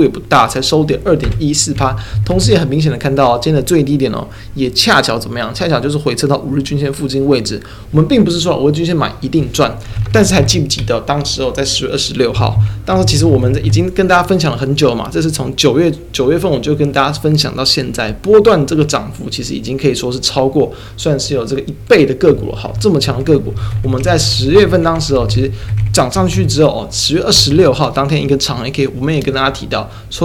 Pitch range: 110-150 Hz